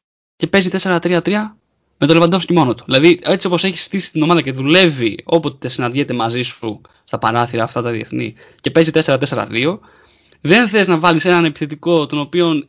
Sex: male